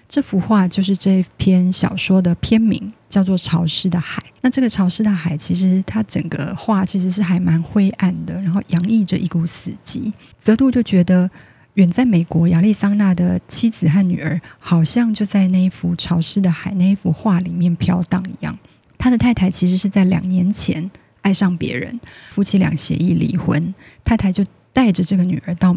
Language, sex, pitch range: Chinese, female, 175-210 Hz